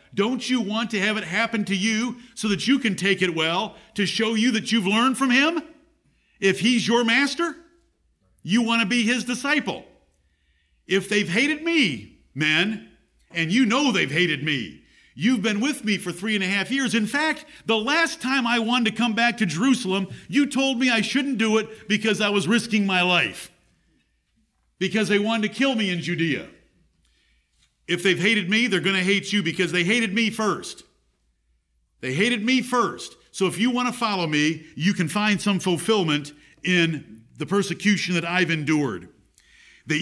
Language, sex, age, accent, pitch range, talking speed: English, male, 50-69, American, 175-230 Hz, 185 wpm